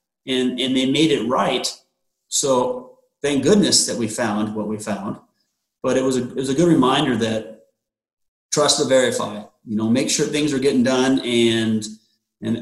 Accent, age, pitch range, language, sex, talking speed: American, 30-49, 115-140 Hz, English, male, 180 wpm